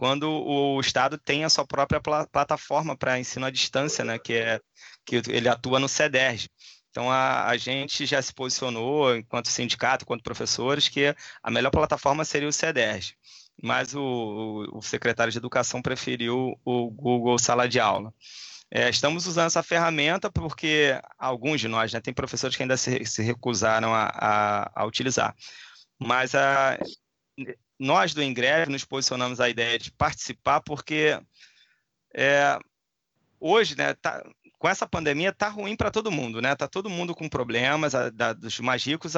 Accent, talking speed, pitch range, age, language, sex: Brazilian, 160 wpm, 125-150 Hz, 20-39, Portuguese, male